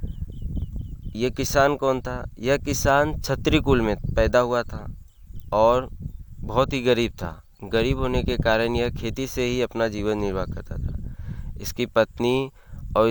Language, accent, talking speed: Hindi, native, 145 wpm